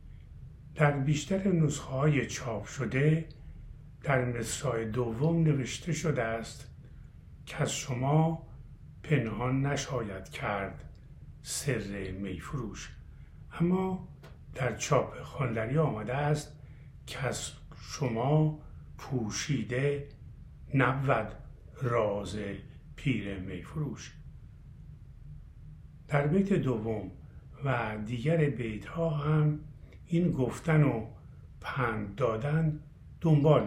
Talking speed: 80 wpm